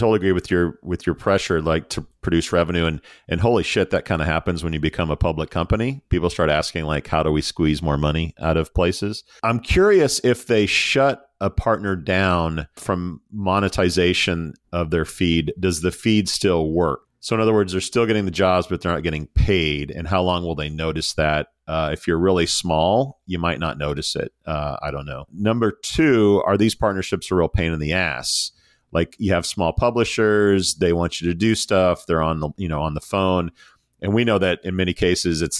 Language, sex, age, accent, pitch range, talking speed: English, male, 40-59, American, 80-100 Hz, 215 wpm